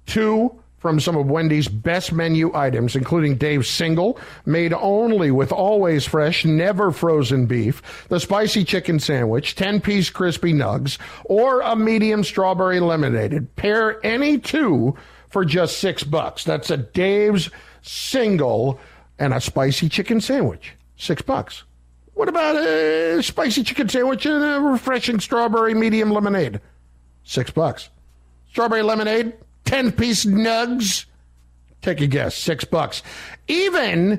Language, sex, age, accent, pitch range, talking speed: English, male, 50-69, American, 145-220 Hz, 130 wpm